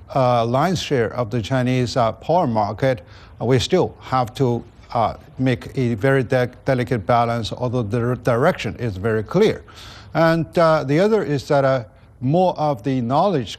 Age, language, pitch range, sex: 70-89, English, 115-145 Hz, male